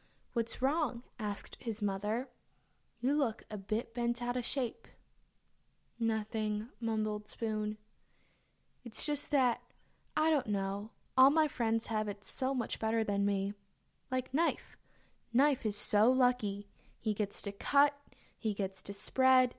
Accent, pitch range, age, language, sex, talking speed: American, 210-250 Hz, 10-29, English, female, 140 wpm